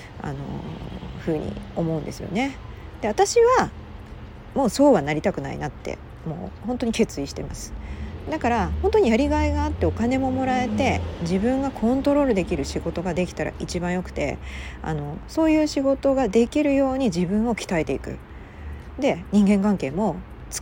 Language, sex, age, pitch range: Japanese, female, 40-59, 160-270 Hz